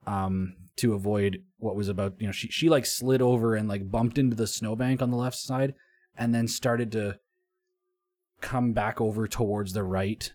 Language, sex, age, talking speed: English, male, 20-39, 190 wpm